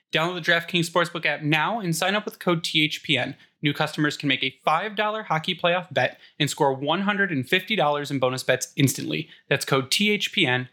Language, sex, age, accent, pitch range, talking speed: English, male, 10-29, American, 135-175 Hz, 175 wpm